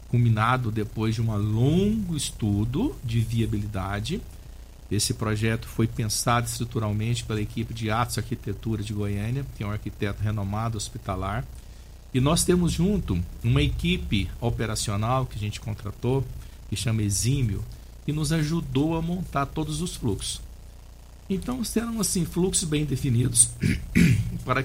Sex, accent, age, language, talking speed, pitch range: male, Brazilian, 50-69, Portuguese, 135 wpm, 105-150 Hz